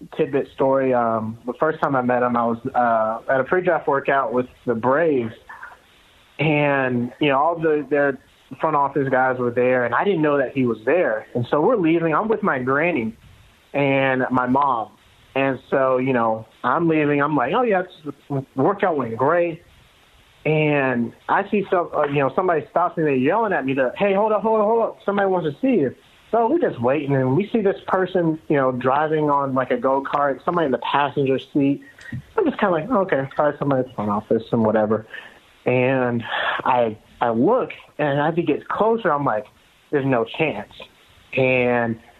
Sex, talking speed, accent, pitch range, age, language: male, 200 wpm, American, 125-160 Hz, 30-49, English